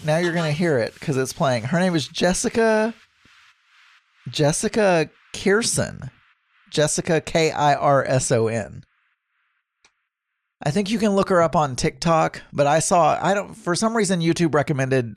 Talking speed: 165 wpm